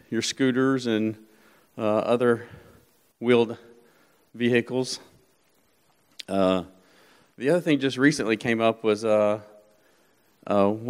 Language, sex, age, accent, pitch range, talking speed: English, male, 40-59, American, 105-120 Hz, 100 wpm